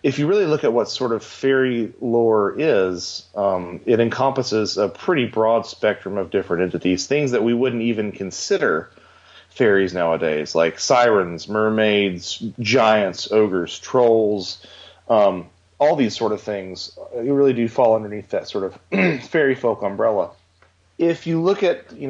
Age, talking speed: 30-49, 150 wpm